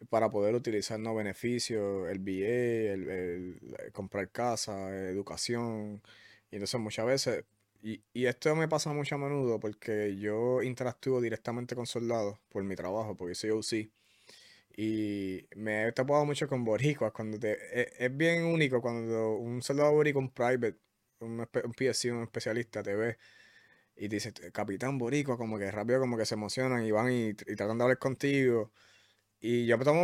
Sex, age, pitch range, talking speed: male, 20-39, 105-130 Hz, 180 wpm